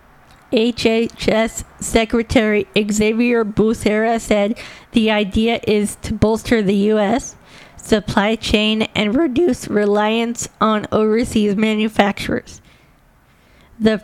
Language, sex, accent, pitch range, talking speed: English, female, American, 205-230 Hz, 90 wpm